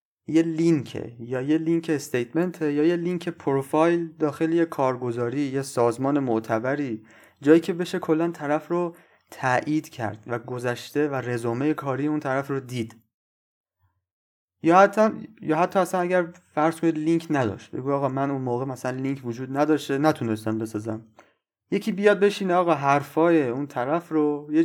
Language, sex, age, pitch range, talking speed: Persian, male, 30-49, 120-160 Hz, 150 wpm